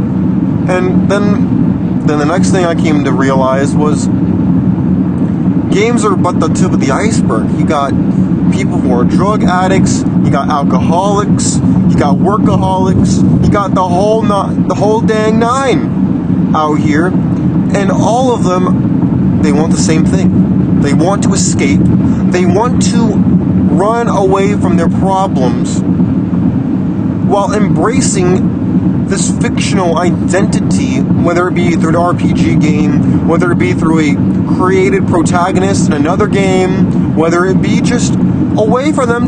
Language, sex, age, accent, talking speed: English, male, 30-49, American, 140 wpm